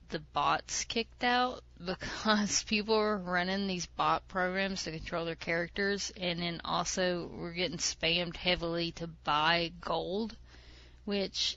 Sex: female